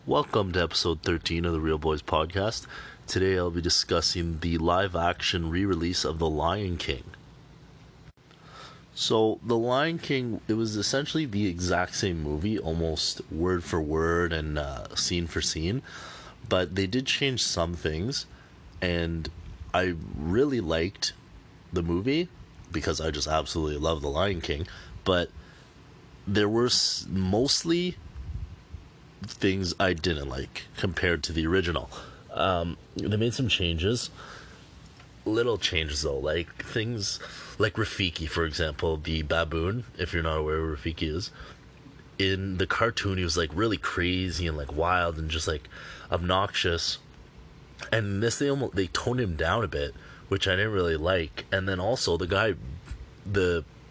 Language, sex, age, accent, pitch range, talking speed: English, male, 30-49, American, 80-105 Hz, 145 wpm